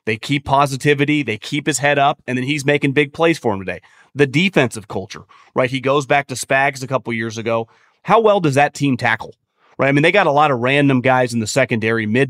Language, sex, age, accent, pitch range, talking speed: English, male, 30-49, American, 125-150 Hz, 245 wpm